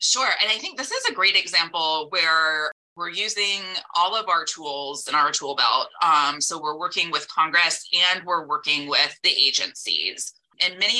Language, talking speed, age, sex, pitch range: English, 185 wpm, 20-39, female, 145-180 Hz